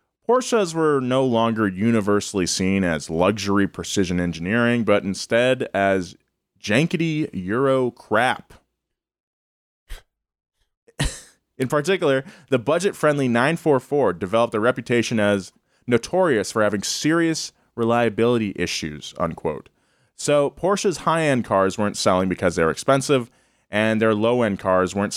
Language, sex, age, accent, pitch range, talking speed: English, male, 20-39, American, 100-140 Hz, 110 wpm